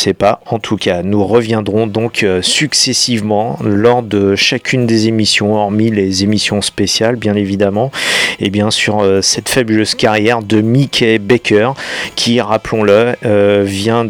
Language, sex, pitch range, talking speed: French, male, 105-120 Hz, 140 wpm